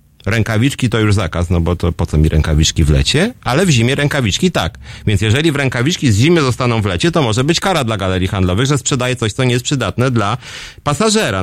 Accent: native